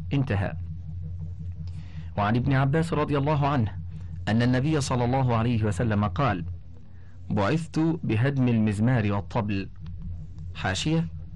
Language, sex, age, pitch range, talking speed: Arabic, male, 40-59, 90-125 Hz, 100 wpm